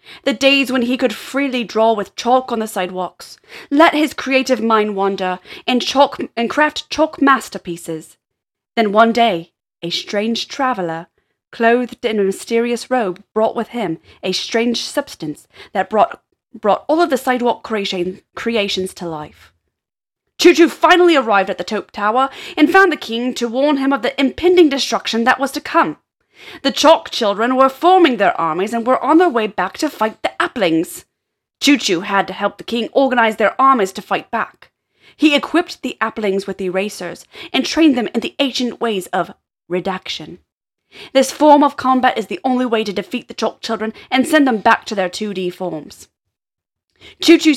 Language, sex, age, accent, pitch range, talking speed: English, female, 20-39, British, 205-280 Hz, 175 wpm